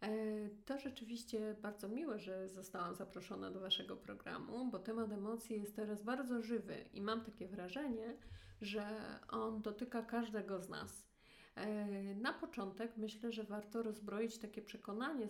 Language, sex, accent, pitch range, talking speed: Polish, female, native, 205-240 Hz, 135 wpm